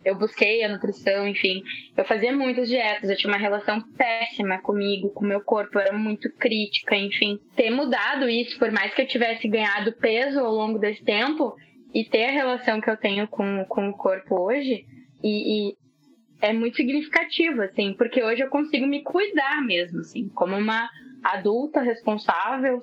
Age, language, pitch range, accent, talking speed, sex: 10-29, Portuguese, 210-270 Hz, Brazilian, 175 wpm, female